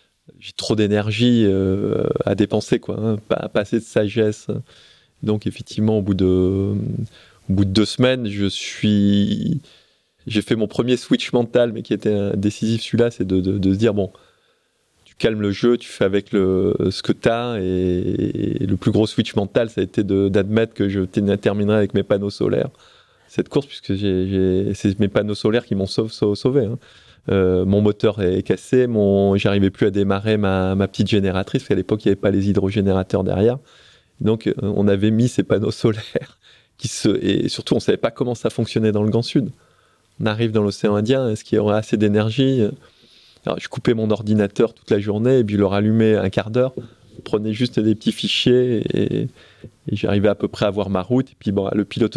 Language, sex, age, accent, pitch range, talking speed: French, male, 20-39, French, 100-115 Hz, 205 wpm